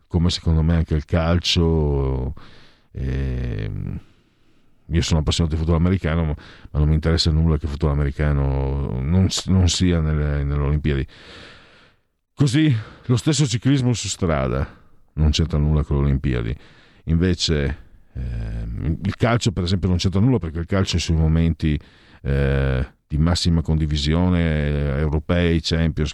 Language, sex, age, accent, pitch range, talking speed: Italian, male, 50-69, native, 75-95 Hz, 140 wpm